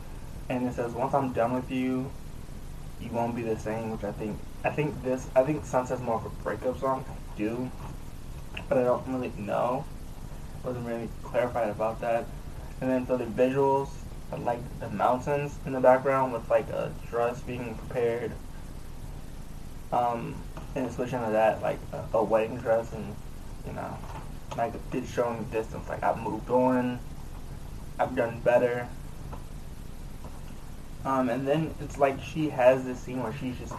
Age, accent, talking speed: 20-39, American, 165 wpm